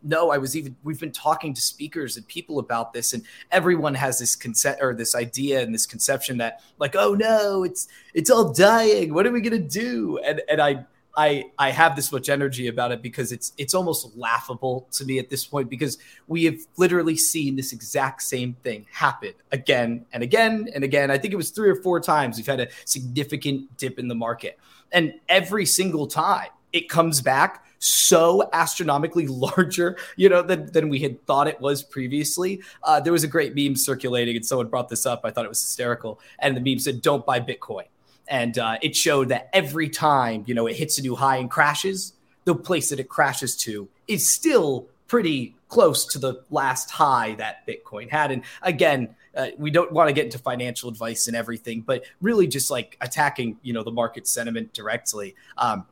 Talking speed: 205 wpm